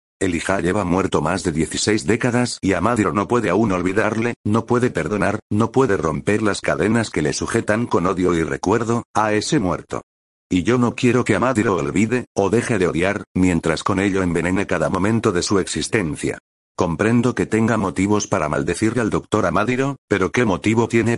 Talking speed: 180 wpm